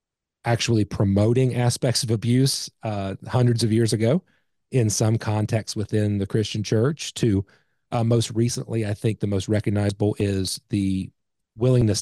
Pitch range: 100-120 Hz